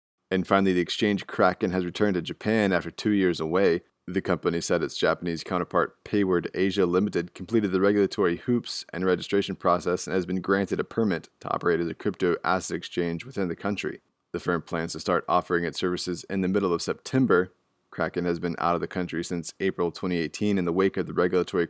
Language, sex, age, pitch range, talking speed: English, male, 20-39, 85-100 Hz, 205 wpm